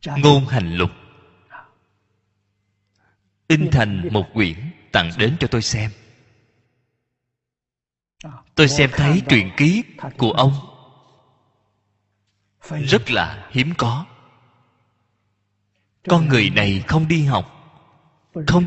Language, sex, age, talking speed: Vietnamese, male, 20-39, 95 wpm